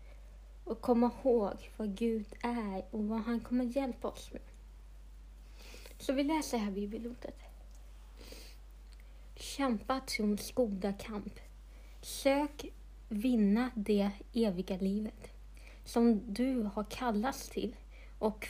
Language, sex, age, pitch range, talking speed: Swedish, female, 30-49, 190-245 Hz, 110 wpm